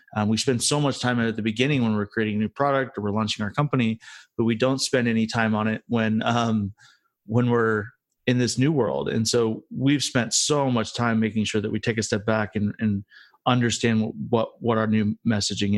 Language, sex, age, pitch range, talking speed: English, male, 30-49, 105-120 Hz, 230 wpm